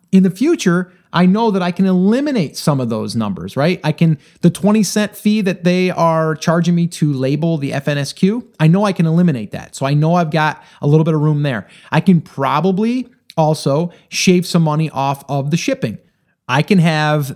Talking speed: 205 wpm